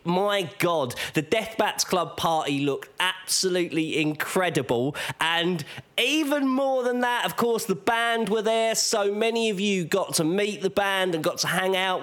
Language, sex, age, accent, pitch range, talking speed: English, male, 20-39, British, 160-210 Hz, 175 wpm